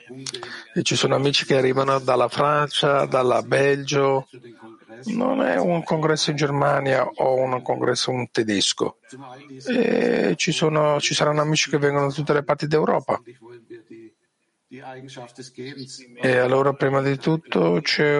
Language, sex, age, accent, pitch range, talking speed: Italian, male, 50-69, native, 125-150 Hz, 120 wpm